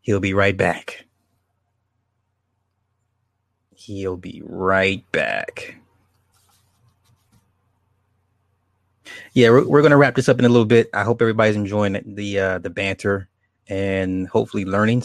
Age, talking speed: 20-39, 125 wpm